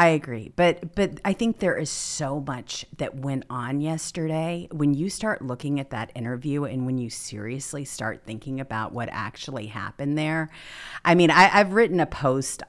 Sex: female